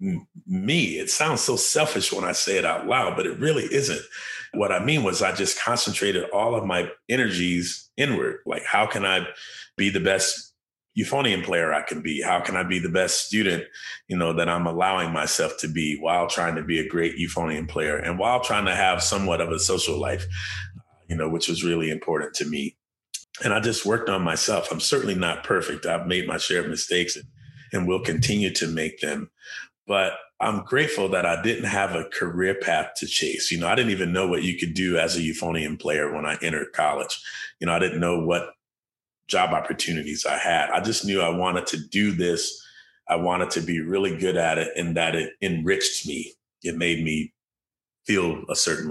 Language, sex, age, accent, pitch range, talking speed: English, male, 30-49, American, 85-95 Hz, 210 wpm